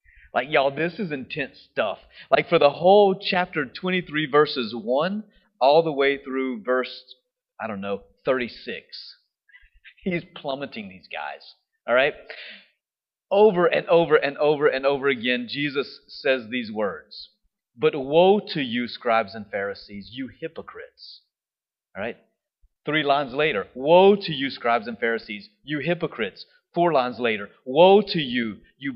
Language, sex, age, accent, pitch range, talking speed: English, male, 30-49, American, 135-195 Hz, 145 wpm